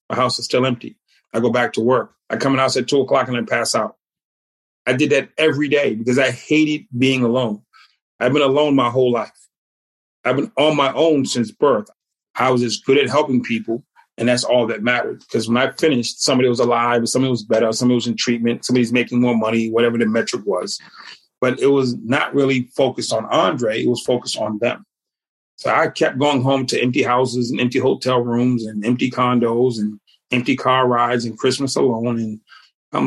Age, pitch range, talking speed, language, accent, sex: 30-49, 120-135 Hz, 210 wpm, English, American, male